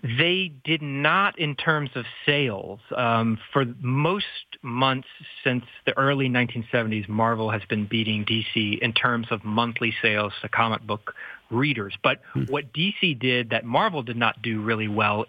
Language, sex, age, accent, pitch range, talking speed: English, male, 40-59, American, 115-140 Hz, 155 wpm